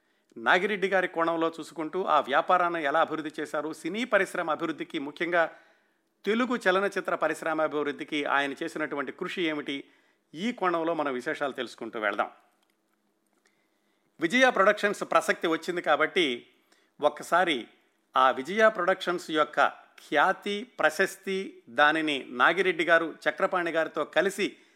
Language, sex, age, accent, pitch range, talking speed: Telugu, male, 50-69, native, 155-185 Hz, 110 wpm